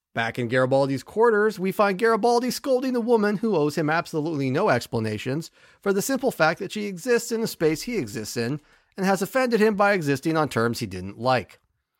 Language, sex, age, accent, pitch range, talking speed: English, male, 40-59, American, 120-175 Hz, 200 wpm